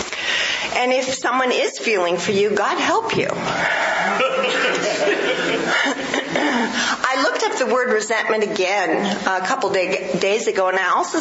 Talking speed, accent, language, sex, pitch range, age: 135 wpm, American, English, female, 195-250 Hz, 50-69